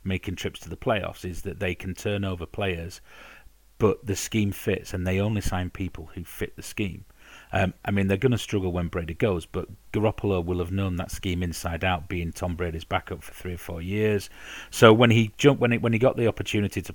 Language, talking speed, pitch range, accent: English, 230 wpm, 90-105 Hz, British